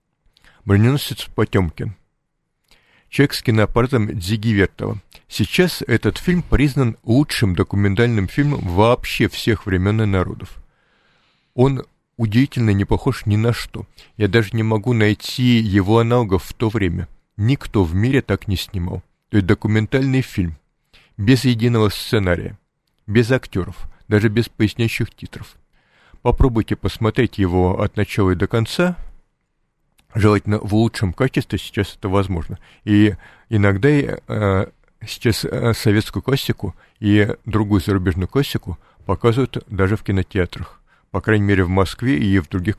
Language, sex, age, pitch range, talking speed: Russian, male, 50-69, 100-125 Hz, 130 wpm